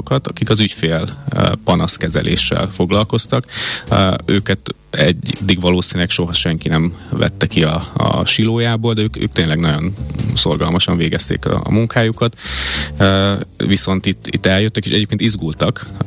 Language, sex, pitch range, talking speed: Hungarian, male, 90-110 Hz, 135 wpm